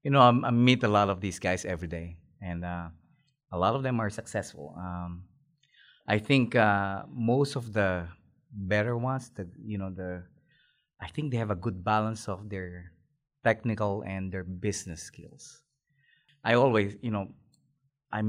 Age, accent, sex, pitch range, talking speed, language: 20-39, Filipino, male, 100-135 Hz, 170 wpm, English